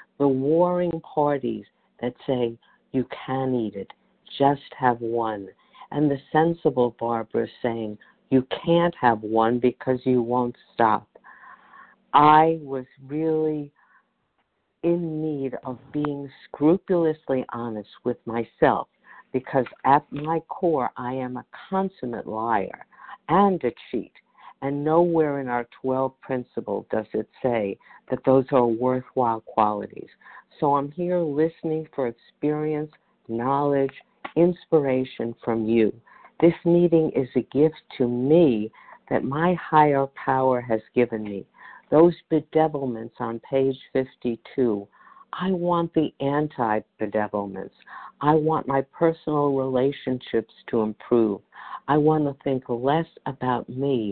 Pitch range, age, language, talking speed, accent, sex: 120-155 Hz, 50-69, English, 120 wpm, American, female